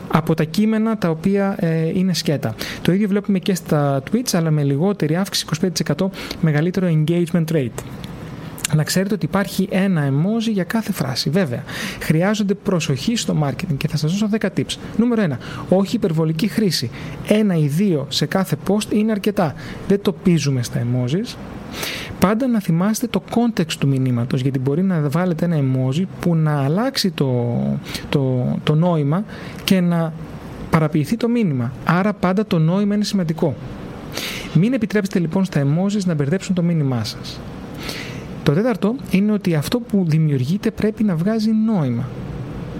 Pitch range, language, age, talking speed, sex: 155-200 Hz, Greek, 30-49, 155 wpm, male